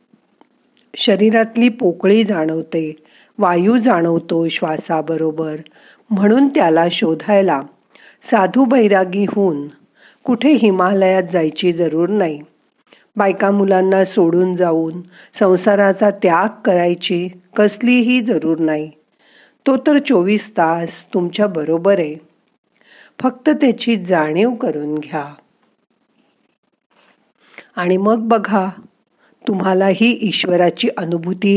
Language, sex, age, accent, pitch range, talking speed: Marathi, female, 50-69, native, 165-225 Hz, 85 wpm